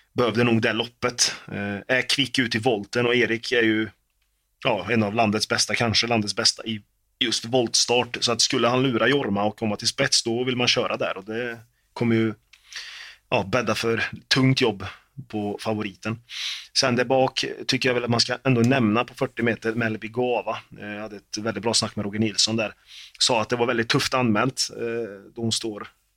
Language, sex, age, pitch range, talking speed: Swedish, male, 30-49, 105-120 Hz, 200 wpm